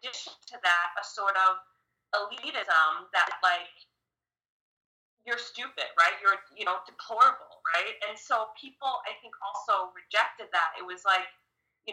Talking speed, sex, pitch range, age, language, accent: 140 wpm, female, 185-255 Hz, 30-49, English, American